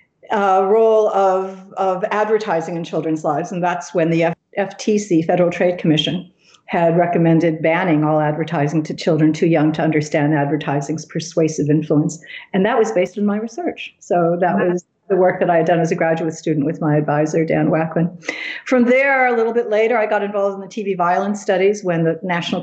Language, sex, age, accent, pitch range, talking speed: English, female, 50-69, American, 160-190 Hz, 190 wpm